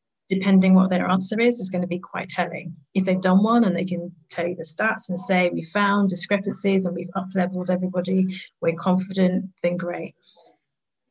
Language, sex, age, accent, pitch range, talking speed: English, female, 20-39, British, 175-200 Hz, 195 wpm